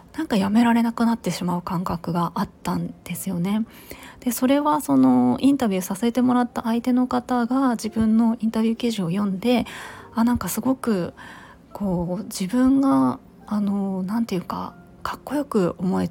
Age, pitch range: 20-39, 190-245 Hz